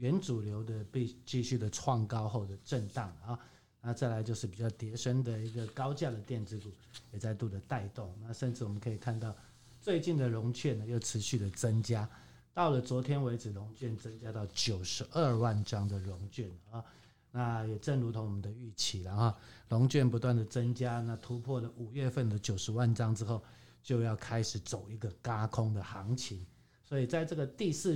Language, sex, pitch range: Chinese, male, 105-125 Hz